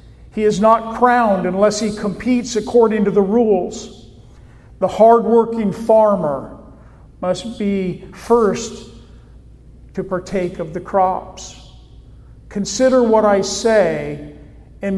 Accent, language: American, English